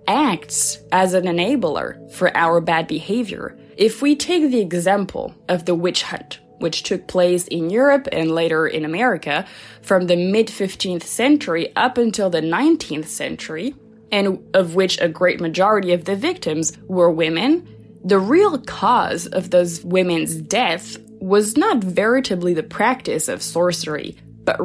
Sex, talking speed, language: female, 150 wpm, English